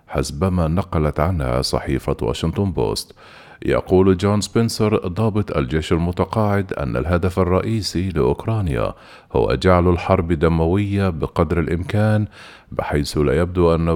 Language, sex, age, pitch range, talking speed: Arabic, male, 50-69, 85-105 Hz, 110 wpm